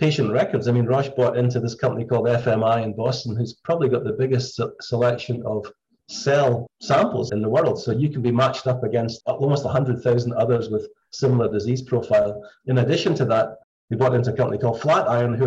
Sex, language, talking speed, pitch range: male, English, 200 wpm, 115-135 Hz